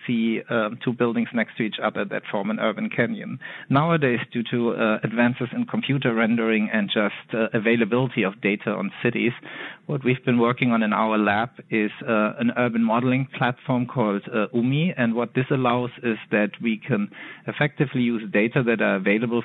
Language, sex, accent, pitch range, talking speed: English, male, German, 110-130 Hz, 185 wpm